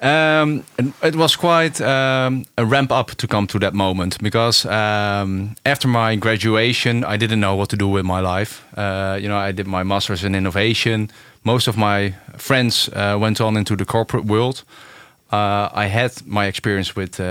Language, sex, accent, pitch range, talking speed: English, male, Dutch, 95-120 Hz, 185 wpm